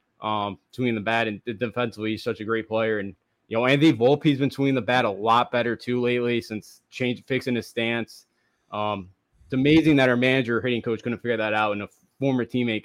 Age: 20-39